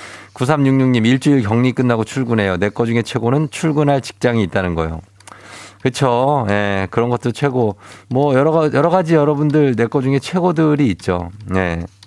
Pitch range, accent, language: 100-150 Hz, native, Korean